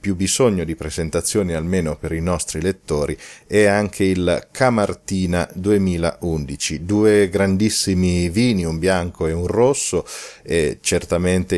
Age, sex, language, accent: 40-59, male, Italian, native